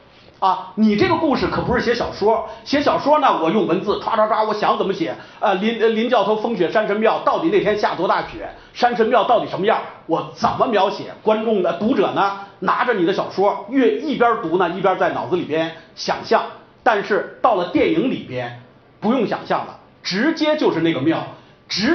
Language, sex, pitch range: Chinese, male, 180-255 Hz